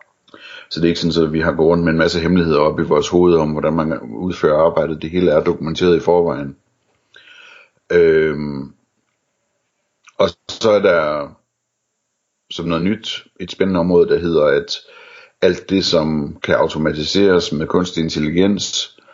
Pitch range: 80-95 Hz